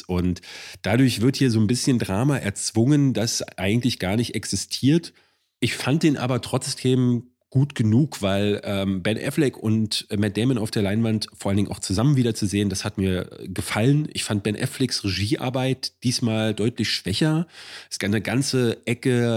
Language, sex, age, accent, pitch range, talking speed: German, male, 40-59, German, 100-125 Hz, 170 wpm